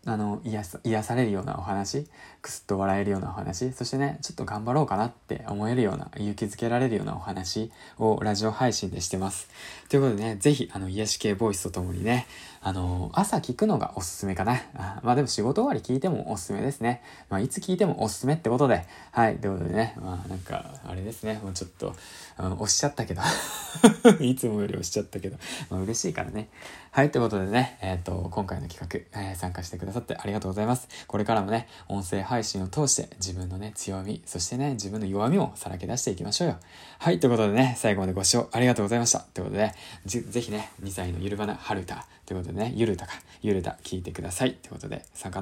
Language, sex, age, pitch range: Japanese, male, 20-39, 95-125 Hz